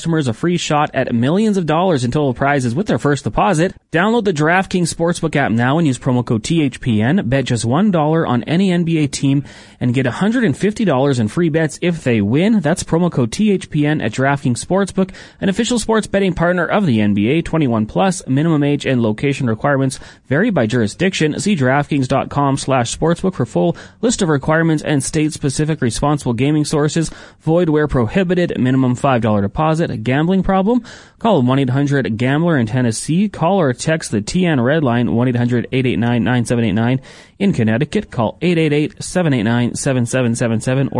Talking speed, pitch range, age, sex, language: 150 wpm, 125-165 Hz, 30-49, male, English